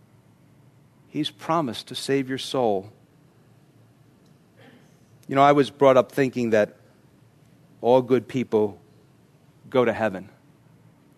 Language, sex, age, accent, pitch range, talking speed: English, male, 40-59, American, 115-145 Hz, 105 wpm